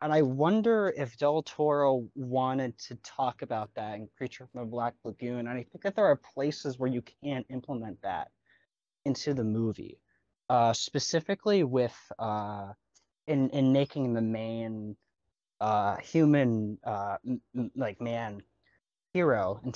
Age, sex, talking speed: 20-39, male, 150 wpm